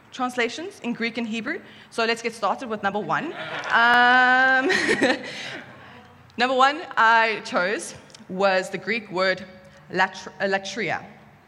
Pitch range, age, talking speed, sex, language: 195-250 Hz, 20-39, 115 wpm, female, English